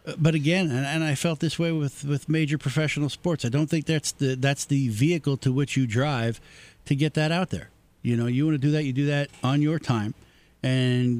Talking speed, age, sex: 230 wpm, 50-69, male